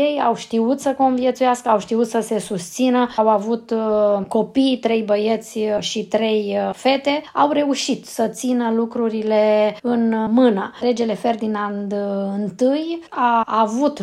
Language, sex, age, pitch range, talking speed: English, female, 20-39, 205-235 Hz, 130 wpm